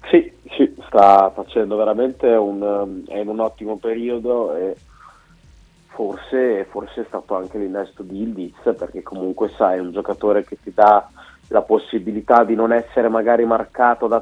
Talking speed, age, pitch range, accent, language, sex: 155 wpm, 30-49, 100-115 Hz, native, Italian, male